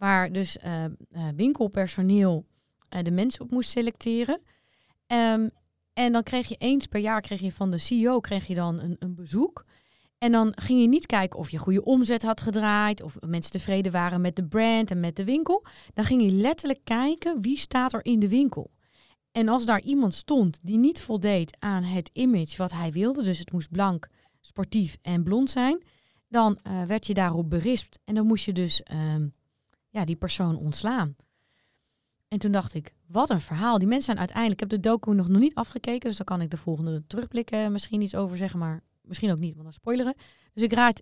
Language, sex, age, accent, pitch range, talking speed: Dutch, female, 30-49, Dutch, 175-235 Hz, 195 wpm